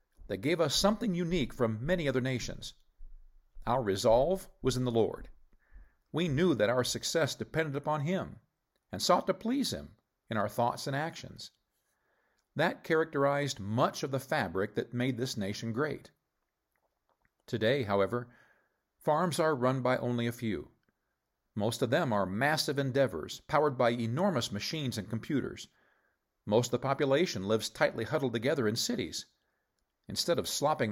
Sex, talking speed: male, 150 wpm